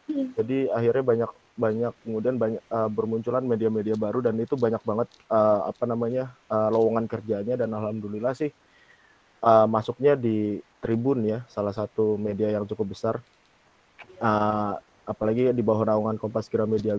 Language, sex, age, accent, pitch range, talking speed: Indonesian, male, 20-39, native, 110-125 Hz, 140 wpm